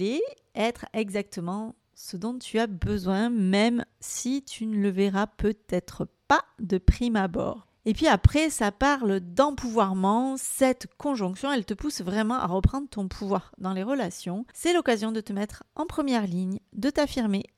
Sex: female